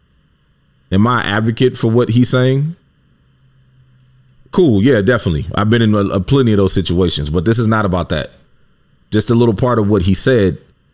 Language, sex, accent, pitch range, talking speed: English, male, American, 90-125 Hz, 175 wpm